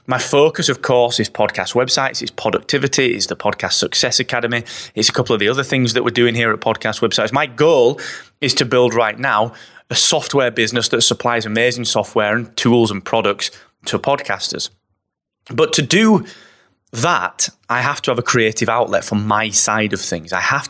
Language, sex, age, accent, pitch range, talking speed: English, male, 20-39, British, 110-145 Hz, 190 wpm